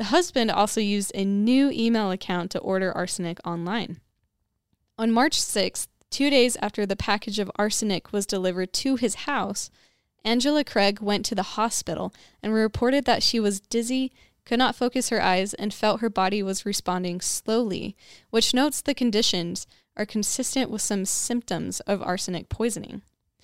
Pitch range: 185-235 Hz